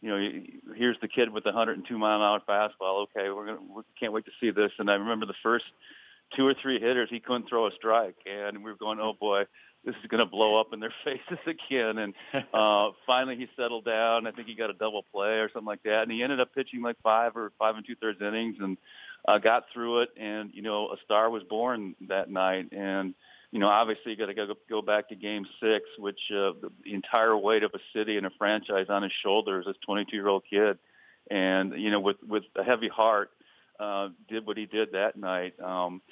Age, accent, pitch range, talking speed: 40-59, American, 100-115 Hz, 235 wpm